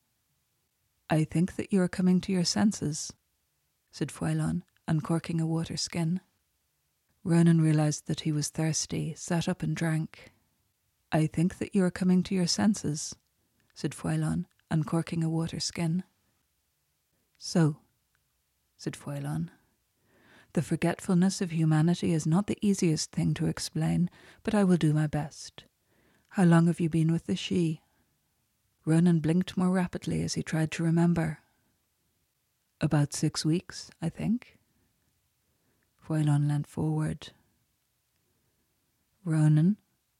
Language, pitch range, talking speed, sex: English, 145-175 Hz, 130 wpm, female